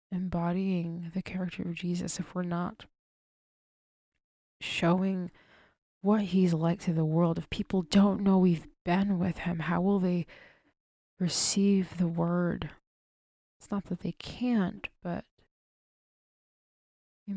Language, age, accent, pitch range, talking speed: English, 20-39, American, 170-190 Hz, 125 wpm